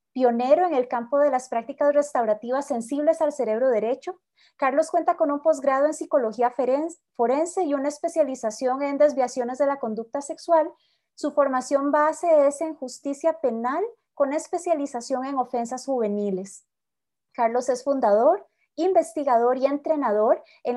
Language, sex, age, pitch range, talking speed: Spanish, female, 30-49, 245-315 Hz, 140 wpm